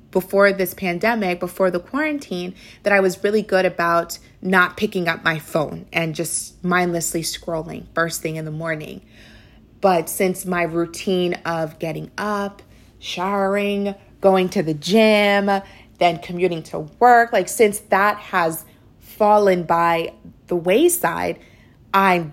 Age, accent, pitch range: 30-49, American, 170-210 Hz